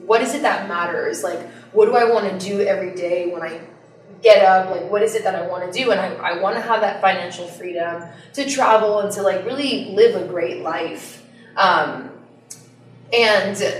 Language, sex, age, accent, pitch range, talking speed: English, female, 20-39, American, 175-220 Hz, 210 wpm